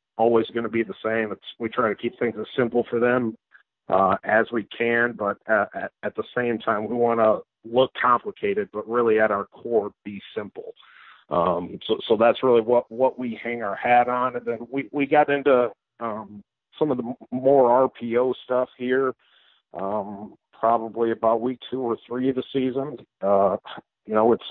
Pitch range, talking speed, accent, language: 110-125 Hz, 195 wpm, American, English